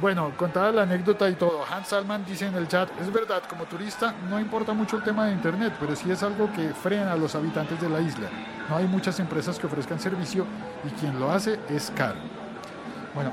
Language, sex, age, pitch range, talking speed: Spanish, male, 50-69, 125-175 Hz, 220 wpm